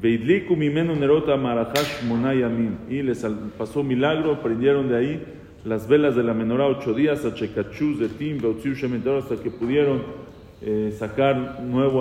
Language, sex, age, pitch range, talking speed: English, male, 40-59, 115-150 Hz, 110 wpm